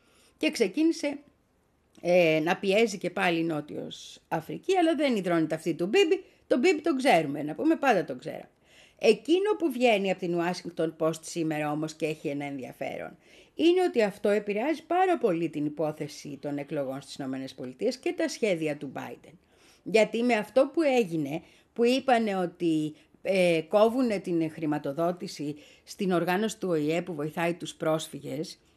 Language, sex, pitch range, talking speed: Greek, female, 160-270 Hz, 155 wpm